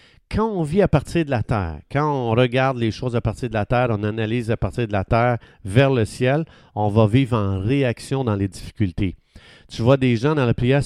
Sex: male